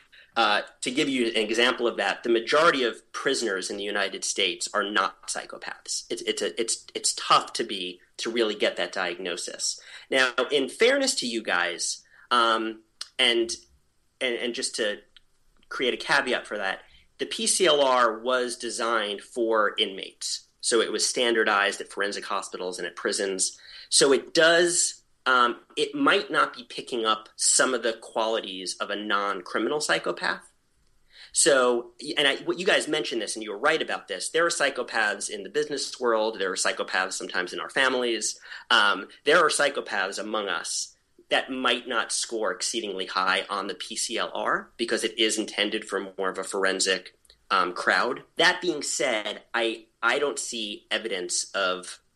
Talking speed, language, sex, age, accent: 170 wpm, English, male, 30-49, American